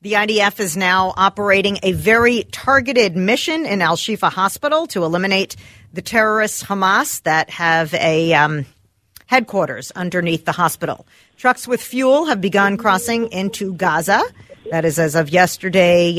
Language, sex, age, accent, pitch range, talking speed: English, female, 50-69, American, 165-210 Hz, 140 wpm